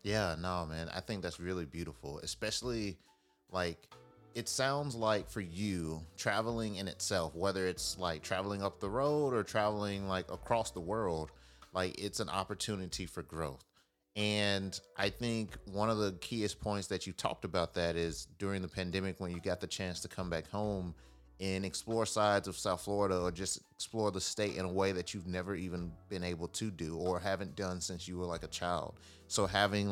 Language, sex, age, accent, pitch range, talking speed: English, male, 30-49, American, 85-100 Hz, 195 wpm